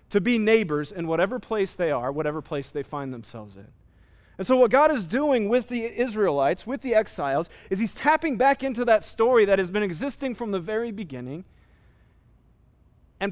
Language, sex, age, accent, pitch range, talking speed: English, male, 30-49, American, 155-225 Hz, 190 wpm